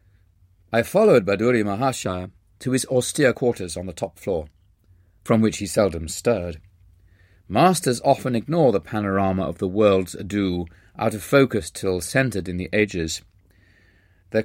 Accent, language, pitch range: British, English, 90-120 Hz